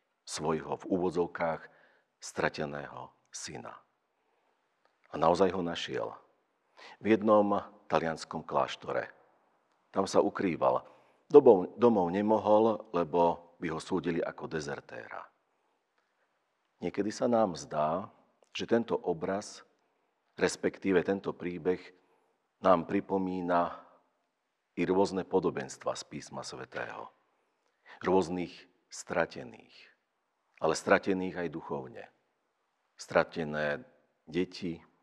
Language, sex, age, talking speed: Slovak, male, 50-69, 85 wpm